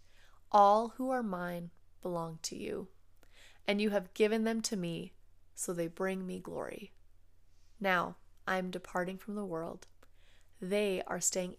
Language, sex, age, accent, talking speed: English, female, 30-49, American, 150 wpm